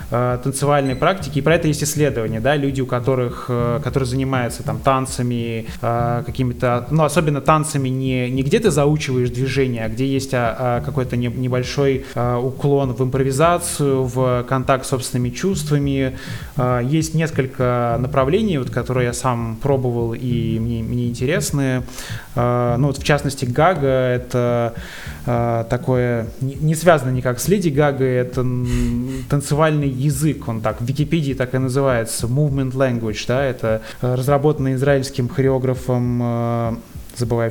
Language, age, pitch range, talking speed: Russian, 20-39, 125-145 Hz, 130 wpm